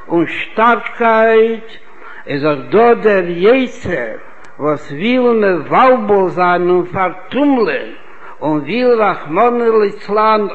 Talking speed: 90 wpm